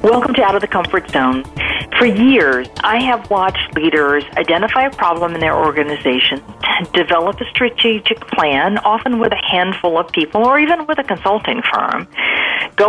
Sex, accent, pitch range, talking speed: female, American, 155-225 Hz, 170 wpm